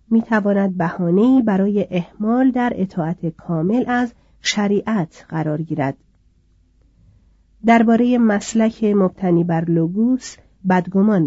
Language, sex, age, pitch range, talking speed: Persian, female, 40-59, 170-215 Hz, 95 wpm